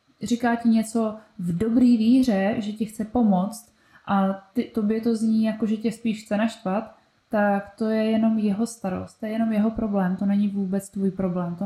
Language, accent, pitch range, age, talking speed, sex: Czech, native, 190-230 Hz, 20-39, 195 wpm, female